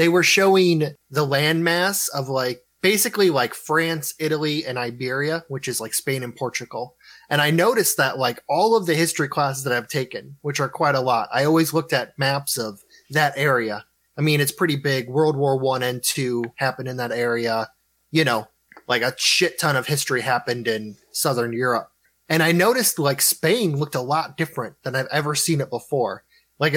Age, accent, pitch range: 20-39, American, 130-165 Hz